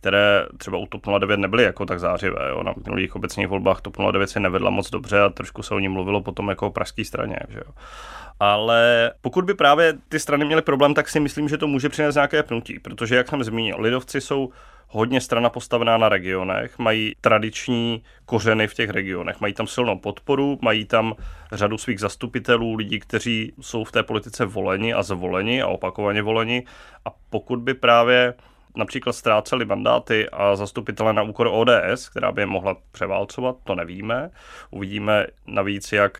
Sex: male